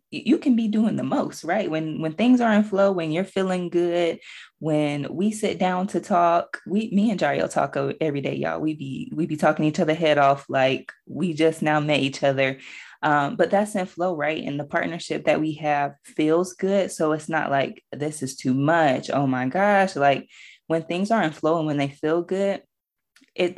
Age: 20-39